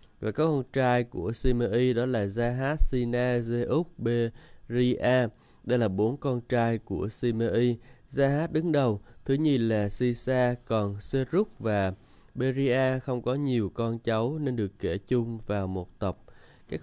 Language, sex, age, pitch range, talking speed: Vietnamese, male, 20-39, 110-130 Hz, 155 wpm